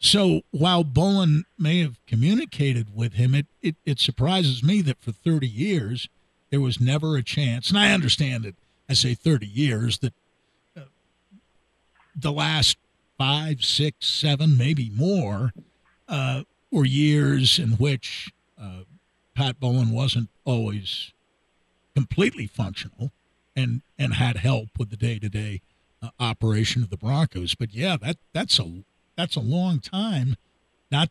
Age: 50-69